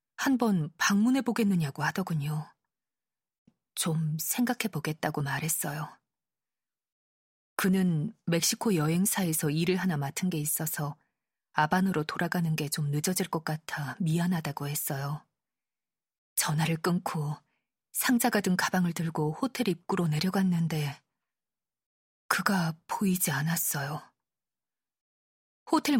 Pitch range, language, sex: 155-205 Hz, Korean, female